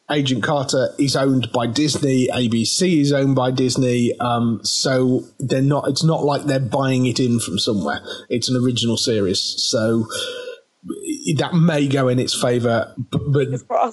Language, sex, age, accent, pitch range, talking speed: English, male, 30-49, British, 125-160 Hz, 155 wpm